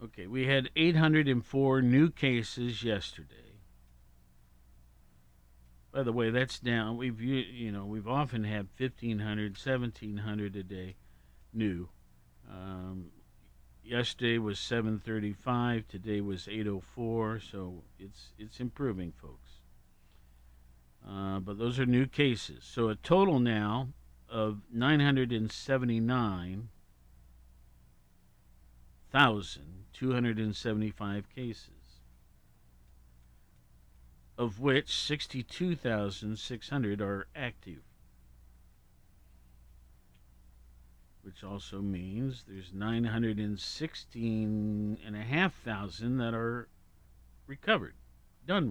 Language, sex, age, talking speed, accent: English, male, 50-69, 80 wpm, American